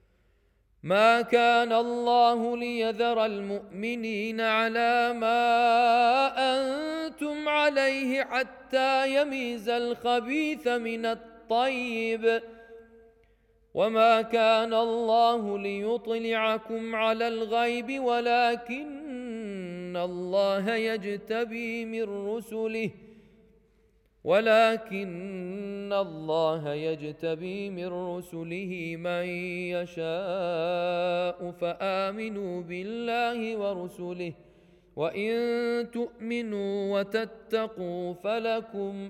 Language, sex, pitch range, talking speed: Urdu, male, 185-235 Hz, 60 wpm